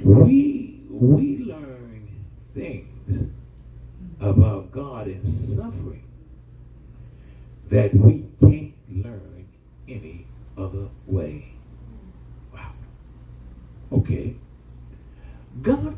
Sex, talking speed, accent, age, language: male, 70 wpm, American, 60-79, English